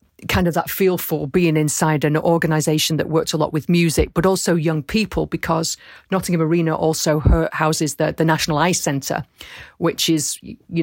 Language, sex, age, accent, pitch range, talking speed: English, female, 40-59, British, 155-175 Hz, 175 wpm